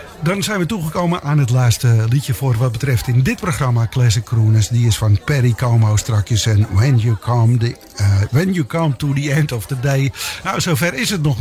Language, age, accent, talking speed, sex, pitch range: English, 50-69, Dutch, 205 wpm, male, 115-145 Hz